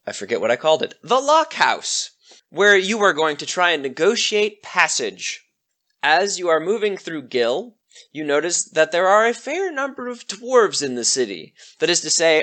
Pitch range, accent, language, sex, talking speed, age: 150-210 Hz, American, English, male, 195 wpm, 20-39